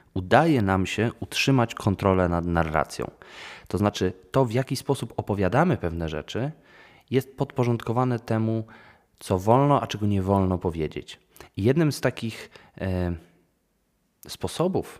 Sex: male